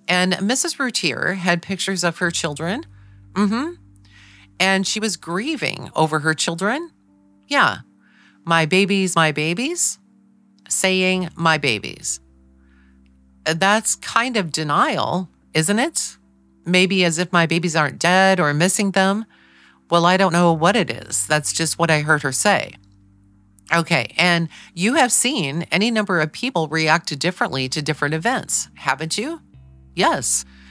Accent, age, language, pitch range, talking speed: American, 40-59, English, 145-190 Hz, 140 wpm